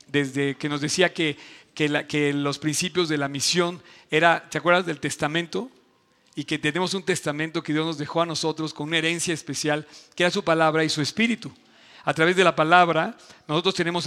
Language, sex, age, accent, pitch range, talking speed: Spanish, male, 50-69, Mexican, 155-185 Hz, 200 wpm